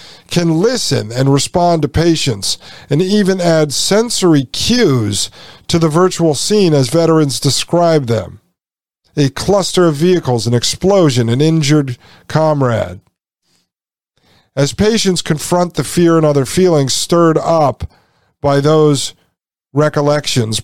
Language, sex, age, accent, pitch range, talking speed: English, male, 50-69, American, 120-165 Hz, 120 wpm